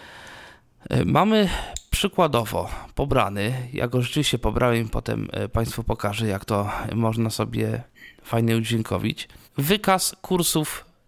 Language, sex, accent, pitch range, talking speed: Polish, male, native, 115-145 Hz, 95 wpm